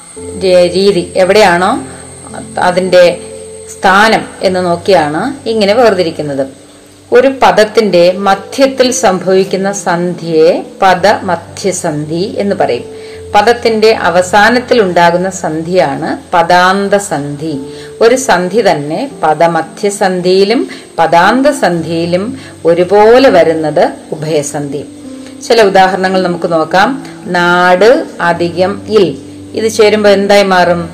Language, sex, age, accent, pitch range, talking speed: Malayalam, female, 30-49, native, 170-200 Hz, 75 wpm